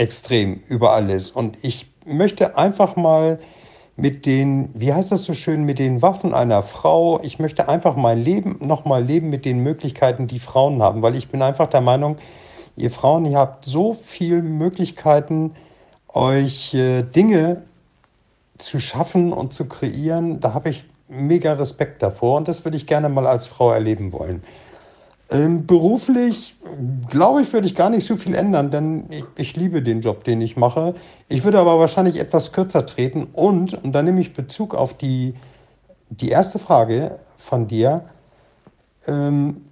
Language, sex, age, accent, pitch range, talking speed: German, male, 50-69, German, 130-165 Hz, 165 wpm